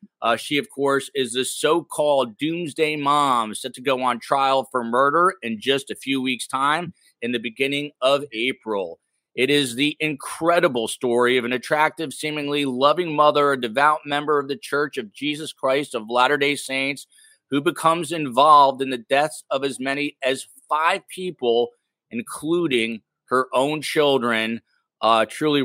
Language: English